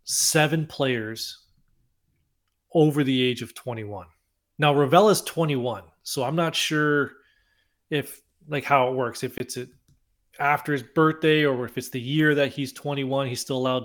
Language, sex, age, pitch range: English, male, 30-49, 125-155 Hz